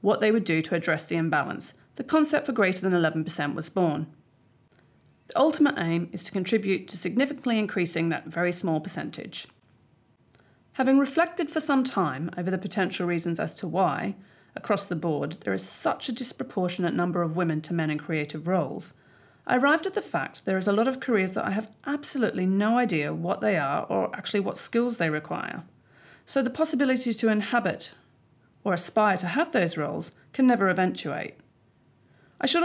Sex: female